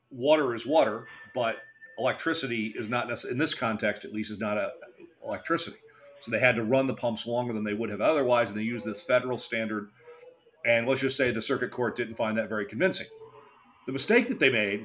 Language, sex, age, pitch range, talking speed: English, male, 40-59, 120-160 Hz, 205 wpm